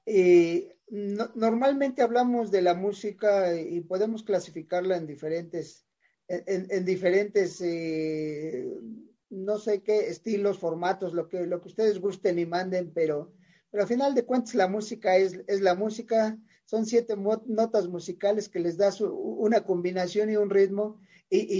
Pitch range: 180-215 Hz